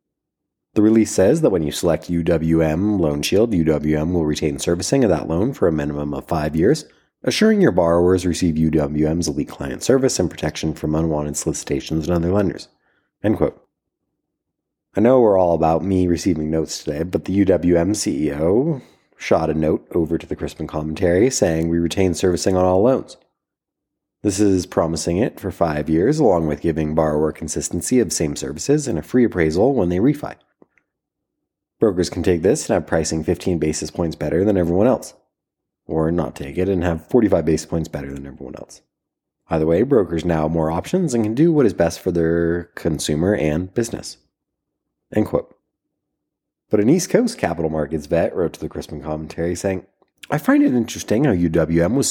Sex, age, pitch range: male, 30-49, 80-90 Hz